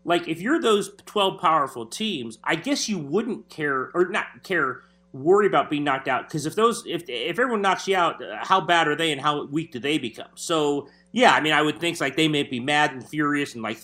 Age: 30-49